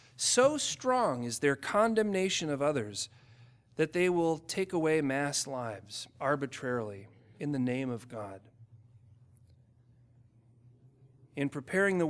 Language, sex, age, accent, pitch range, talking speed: English, male, 40-59, American, 120-155 Hz, 115 wpm